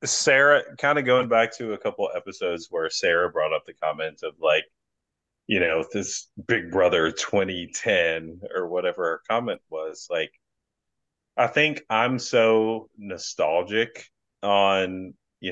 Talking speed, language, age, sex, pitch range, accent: 140 wpm, English, 30-49, male, 85-115 Hz, American